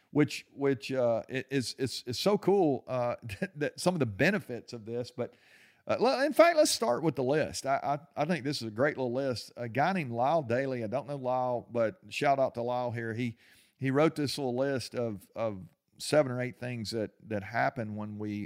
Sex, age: male, 50-69